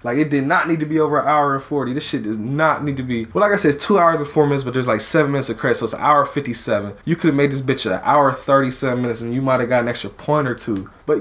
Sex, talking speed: male, 345 wpm